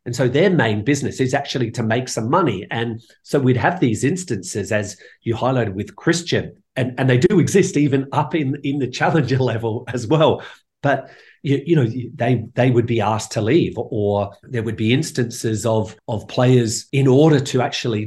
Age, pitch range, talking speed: 40-59, 110-145 Hz, 195 wpm